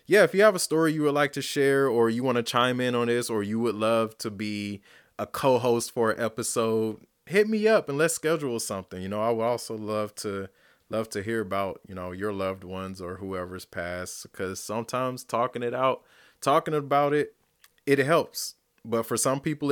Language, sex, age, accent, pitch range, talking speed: English, male, 20-39, American, 95-125 Hz, 215 wpm